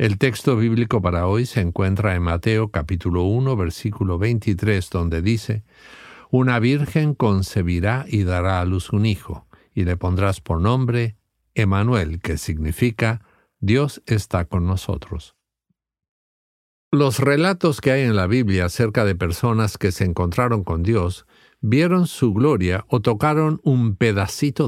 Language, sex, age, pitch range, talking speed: English, male, 50-69, 90-120 Hz, 140 wpm